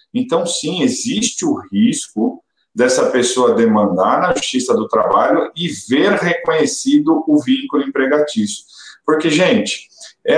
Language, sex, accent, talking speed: Portuguese, male, Brazilian, 120 wpm